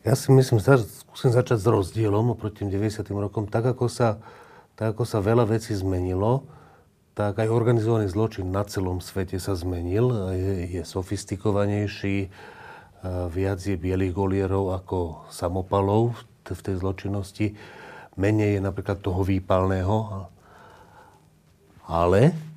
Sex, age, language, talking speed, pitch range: male, 40-59, Slovak, 130 wpm, 95-120 Hz